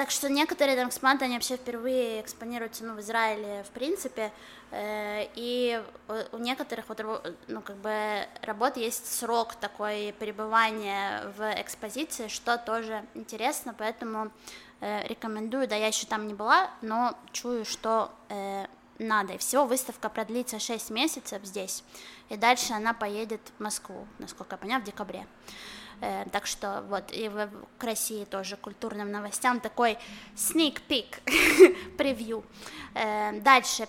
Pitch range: 215-250 Hz